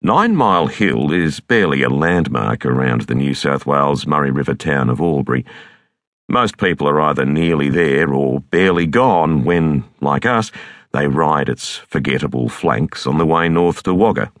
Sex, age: male, 50-69